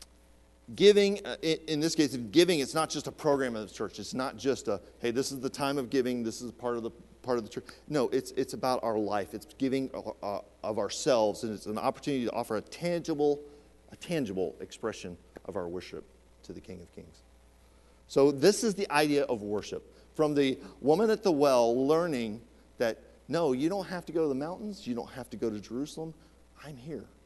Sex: male